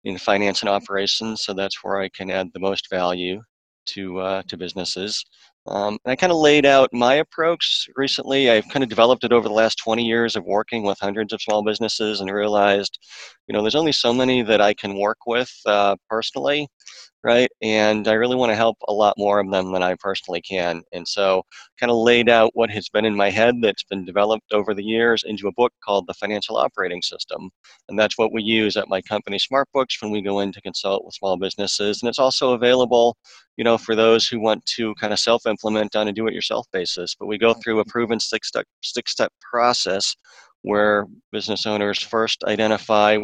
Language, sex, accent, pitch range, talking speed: English, male, American, 100-115 Hz, 210 wpm